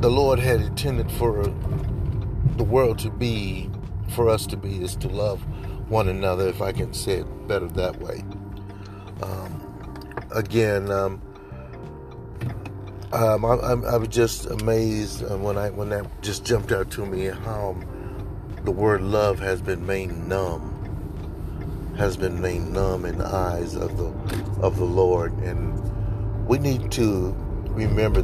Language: English